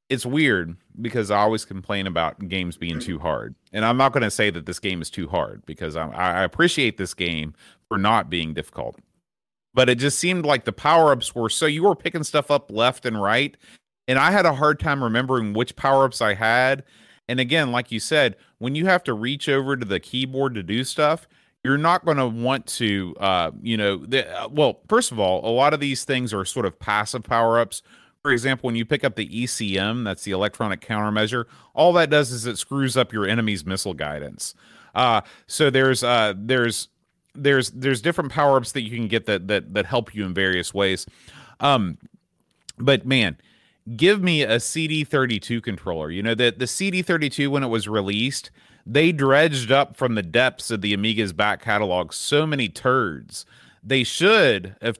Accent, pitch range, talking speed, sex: American, 105-135 Hz, 195 wpm, male